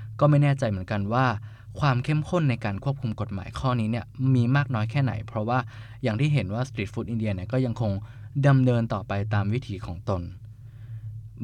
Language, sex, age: Thai, male, 20-39